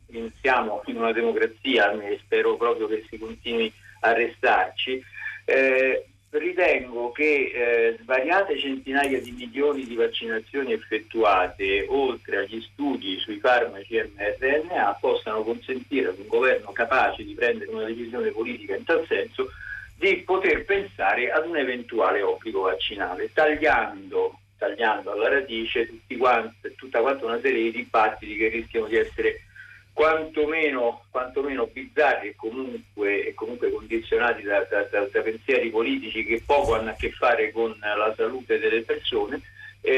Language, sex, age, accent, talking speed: Italian, male, 50-69, native, 140 wpm